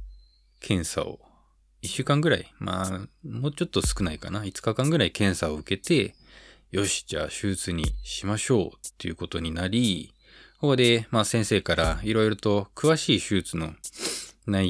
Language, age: Japanese, 20-39